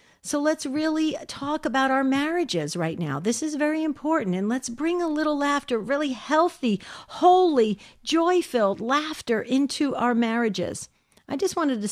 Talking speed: 155 wpm